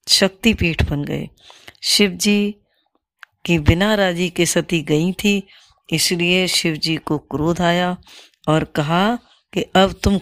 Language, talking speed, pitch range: Hindi, 135 wpm, 155-190 Hz